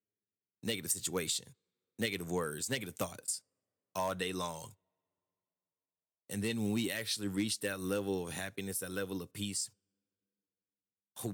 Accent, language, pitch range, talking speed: American, English, 95-110 Hz, 125 wpm